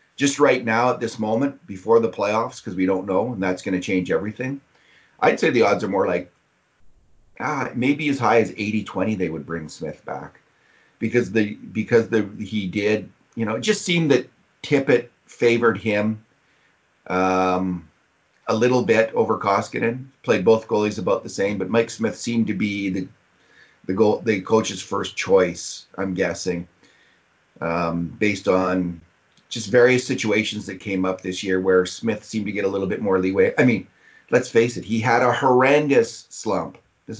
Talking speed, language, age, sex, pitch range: 180 wpm, English, 40-59, male, 95-125 Hz